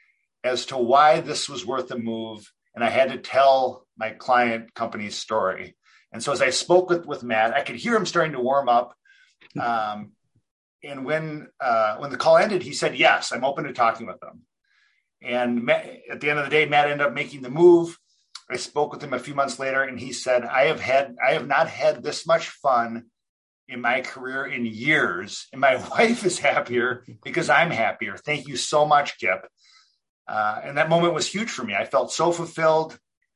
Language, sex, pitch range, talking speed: English, male, 120-160 Hz, 205 wpm